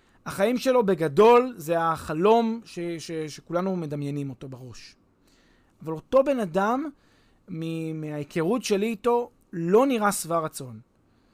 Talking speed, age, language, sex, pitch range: 120 wpm, 30-49, Hebrew, male, 165-225 Hz